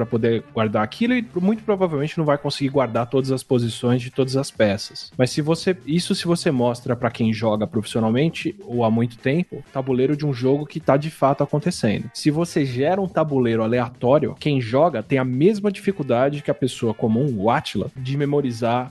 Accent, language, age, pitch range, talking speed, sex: Brazilian, Portuguese, 20-39, 120-150 Hz, 195 wpm, male